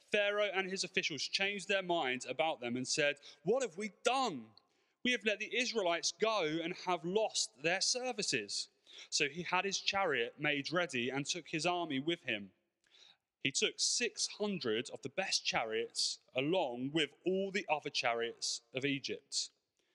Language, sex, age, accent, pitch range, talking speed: English, male, 30-49, British, 125-185 Hz, 160 wpm